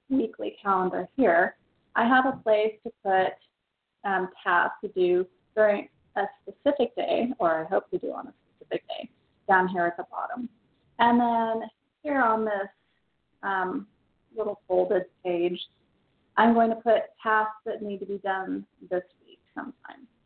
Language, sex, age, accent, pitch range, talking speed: English, female, 30-49, American, 195-240 Hz, 155 wpm